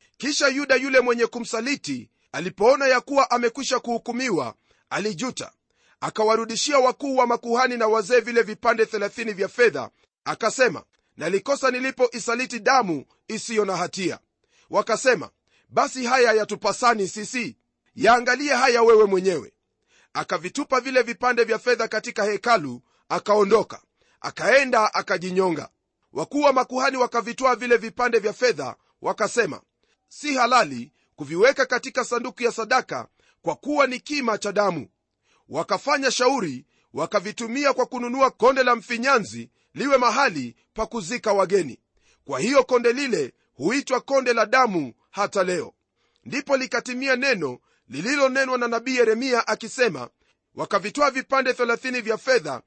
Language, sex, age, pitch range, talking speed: Swahili, male, 40-59, 215-260 Hz, 120 wpm